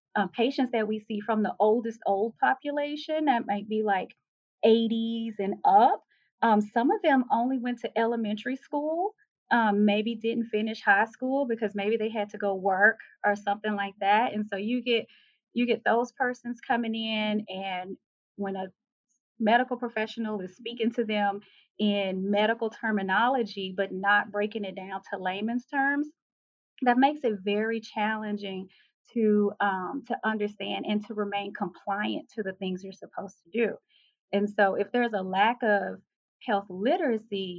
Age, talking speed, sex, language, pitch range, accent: 30-49, 160 wpm, female, English, 200-235 Hz, American